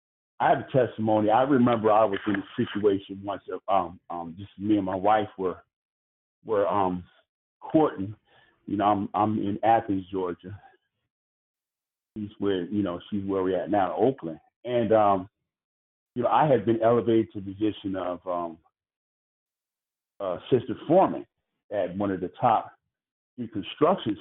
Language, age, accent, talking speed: English, 50-69, American, 155 wpm